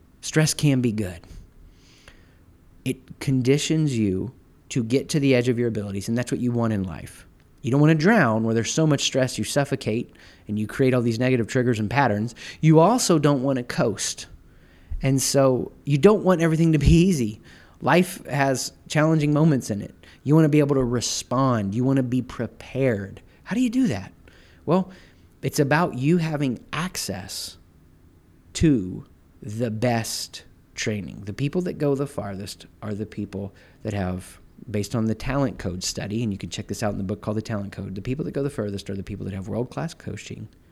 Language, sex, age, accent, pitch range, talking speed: English, male, 30-49, American, 100-140 Hz, 195 wpm